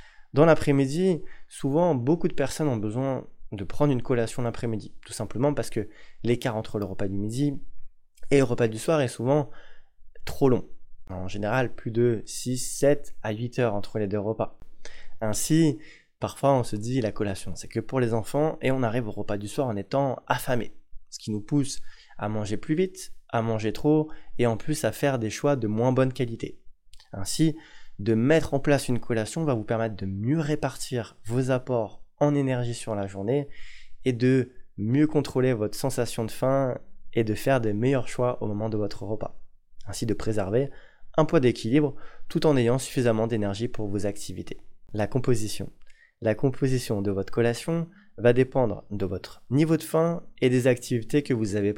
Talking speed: 190 wpm